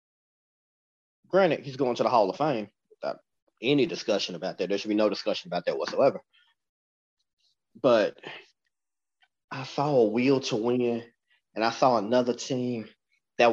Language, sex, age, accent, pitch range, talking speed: English, male, 30-49, American, 110-135 Hz, 150 wpm